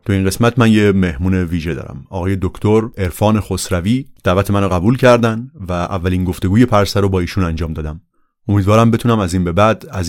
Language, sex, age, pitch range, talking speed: Persian, male, 30-49, 95-115 Hz, 190 wpm